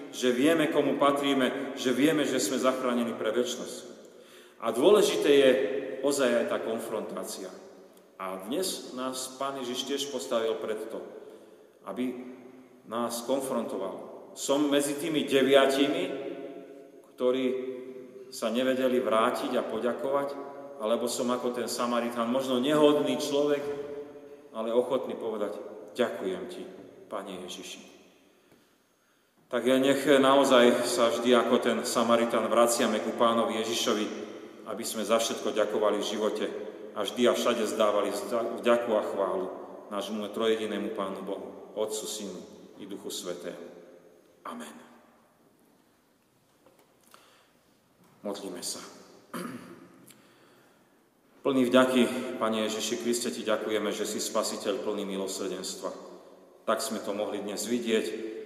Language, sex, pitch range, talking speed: Slovak, male, 110-135 Hz, 115 wpm